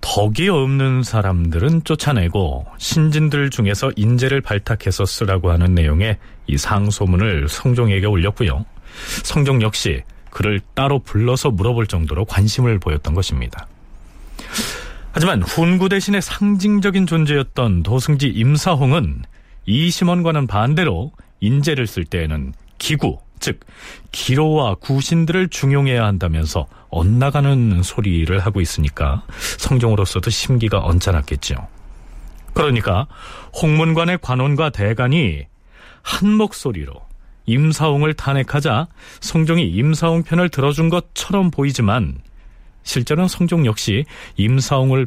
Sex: male